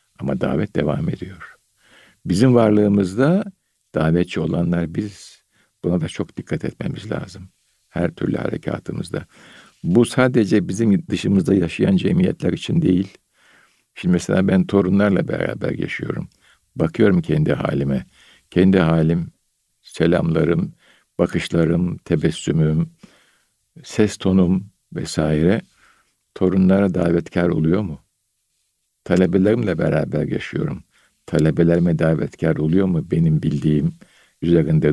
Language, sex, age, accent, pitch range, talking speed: Turkish, male, 60-79, native, 80-105 Hz, 100 wpm